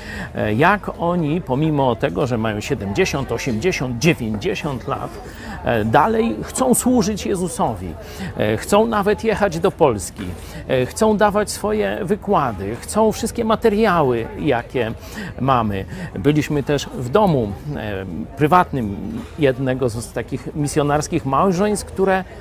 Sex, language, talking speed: male, Polish, 105 wpm